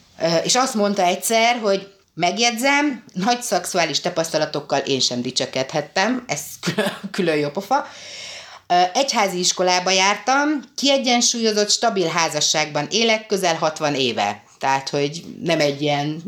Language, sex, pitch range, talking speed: Hungarian, female, 150-215 Hz, 120 wpm